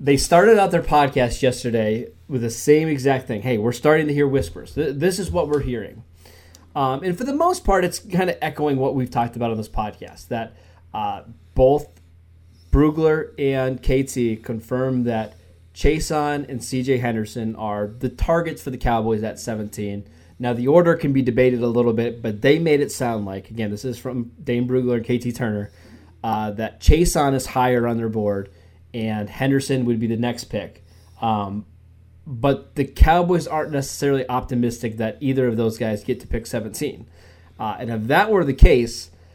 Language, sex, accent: English, male, American